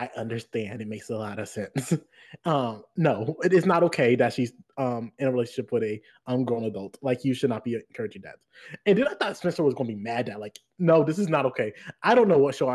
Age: 20-39